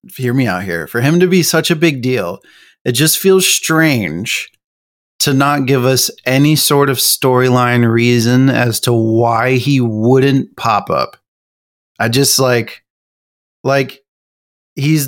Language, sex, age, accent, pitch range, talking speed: English, male, 30-49, American, 120-150 Hz, 145 wpm